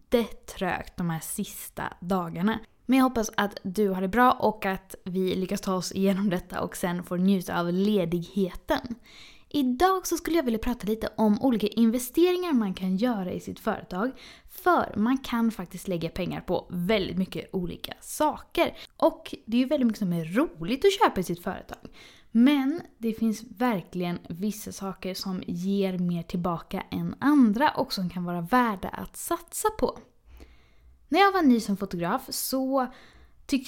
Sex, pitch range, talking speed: female, 190-265 Hz, 175 wpm